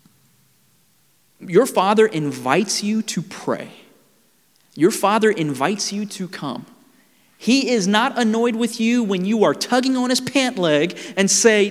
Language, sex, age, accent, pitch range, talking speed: English, male, 30-49, American, 160-225 Hz, 145 wpm